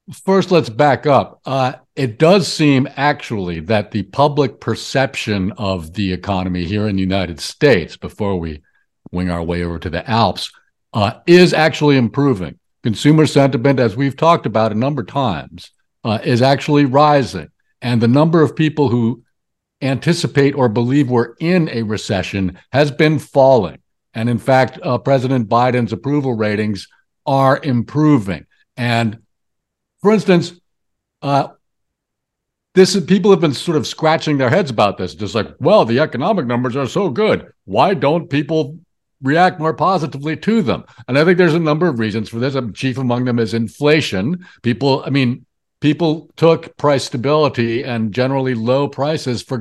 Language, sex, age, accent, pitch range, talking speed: English, male, 60-79, American, 115-160 Hz, 160 wpm